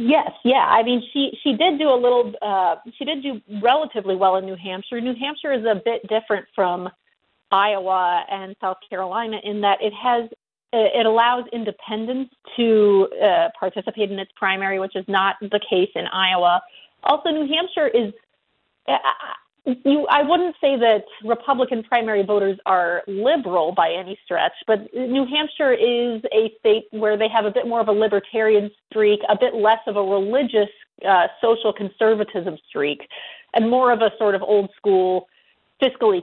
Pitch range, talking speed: 195-250 Hz, 165 wpm